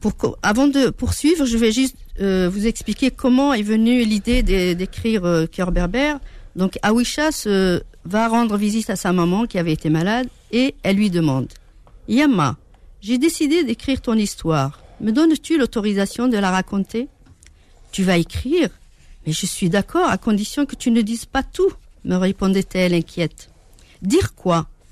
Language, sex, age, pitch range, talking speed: French, female, 60-79, 180-245 Hz, 170 wpm